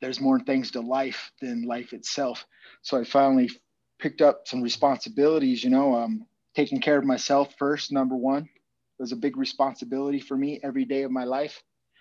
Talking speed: 190 wpm